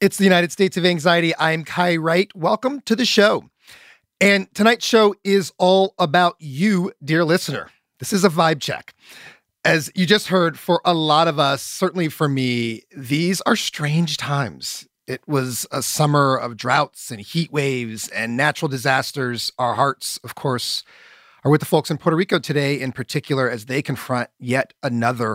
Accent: American